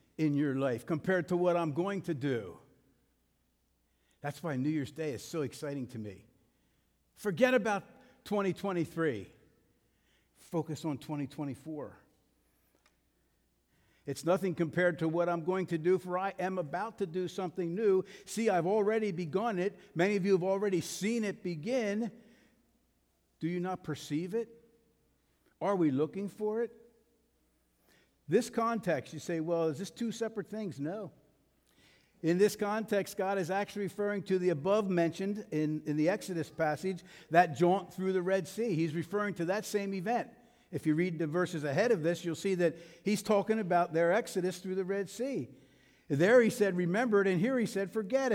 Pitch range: 160-210 Hz